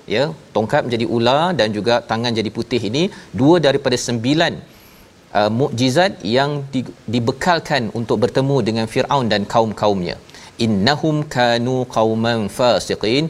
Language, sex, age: Malayalam, male, 40-59